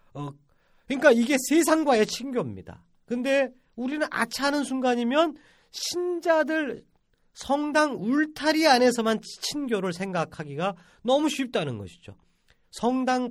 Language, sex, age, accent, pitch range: Korean, male, 40-59, native, 150-245 Hz